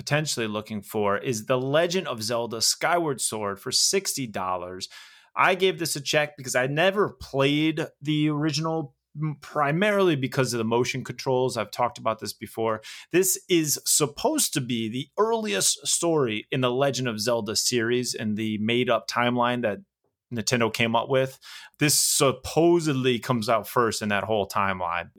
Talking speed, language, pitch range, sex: 155 wpm, English, 110-150 Hz, male